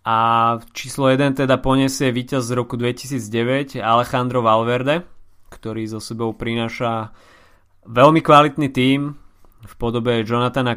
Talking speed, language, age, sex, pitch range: 115 wpm, Slovak, 20-39, male, 110-130 Hz